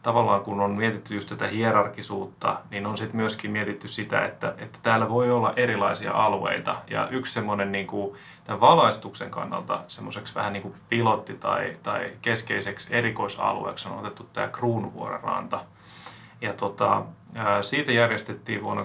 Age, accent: 30-49, native